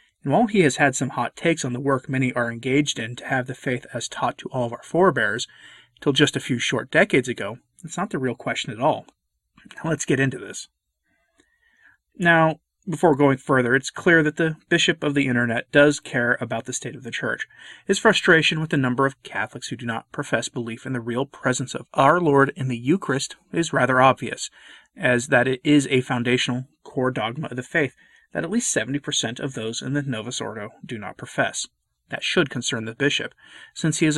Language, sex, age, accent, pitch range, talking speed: English, male, 30-49, American, 125-150 Hz, 210 wpm